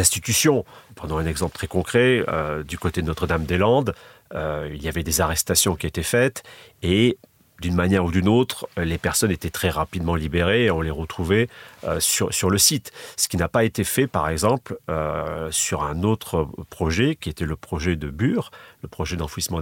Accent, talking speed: French, 190 wpm